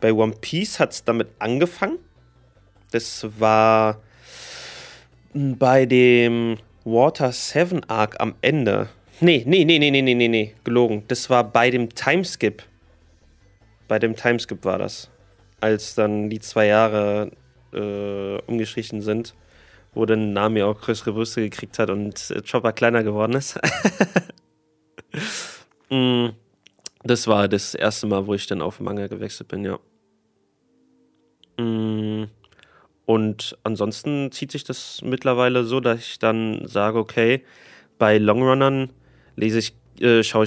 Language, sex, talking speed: German, male, 125 wpm